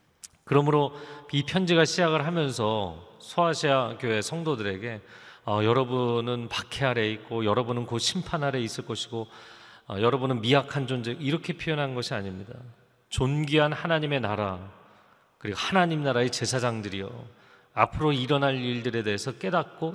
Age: 40-59